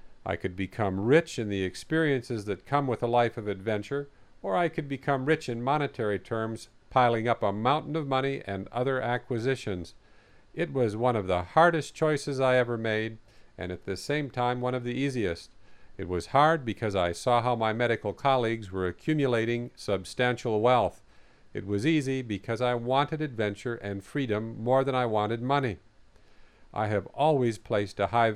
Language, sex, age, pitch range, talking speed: English, male, 50-69, 105-135 Hz, 180 wpm